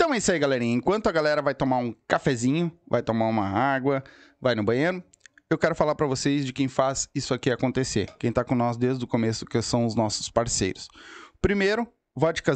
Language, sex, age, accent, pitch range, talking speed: Portuguese, male, 20-39, Brazilian, 125-155 Hz, 210 wpm